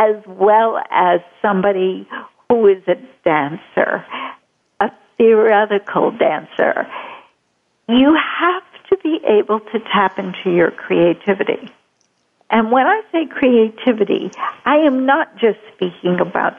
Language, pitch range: English, 185-255 Hz